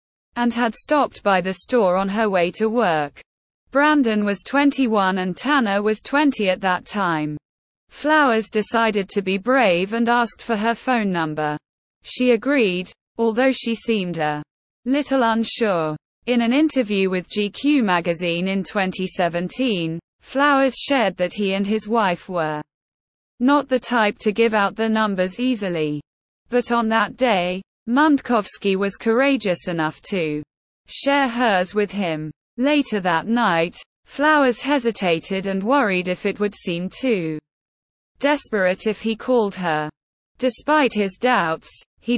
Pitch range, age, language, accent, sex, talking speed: 180-245 Hz, 20-39, English, British, female, 140 wpm